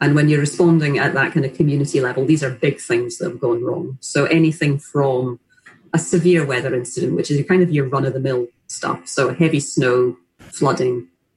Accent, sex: British, female